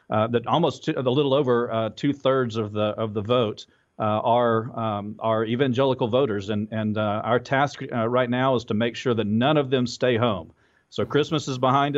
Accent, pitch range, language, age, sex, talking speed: American, 110-125 Hz, English, 40-59, male, 210 wpm